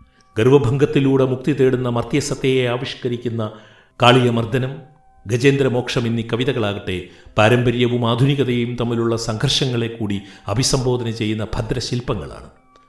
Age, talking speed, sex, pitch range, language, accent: 50-69, 80 wpm, male, 115-135 Hz, Malayalam, native